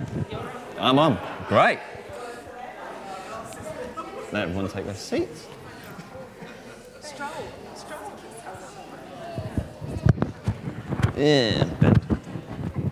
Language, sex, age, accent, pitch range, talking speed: English, male, 30-49, British, 120-160 Hz, 55 wpm